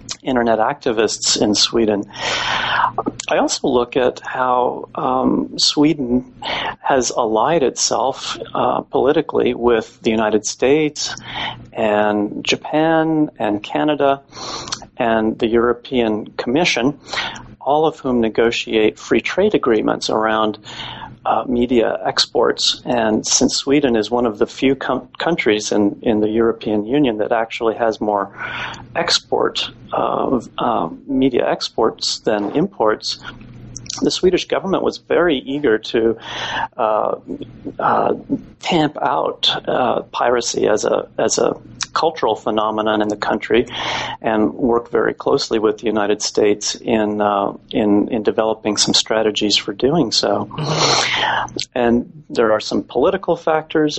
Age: 40-59